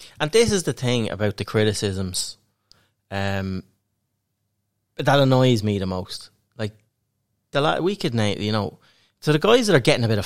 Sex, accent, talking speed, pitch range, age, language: male, Irish, 180 wpm, 105-125 Hz, 30-49, English